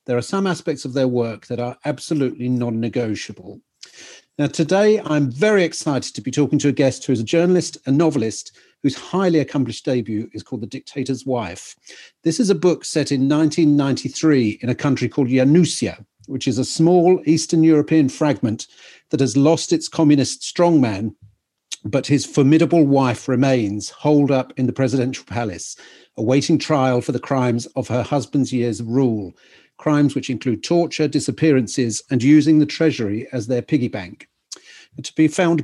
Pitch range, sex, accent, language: 125-155 Hz, male, British, English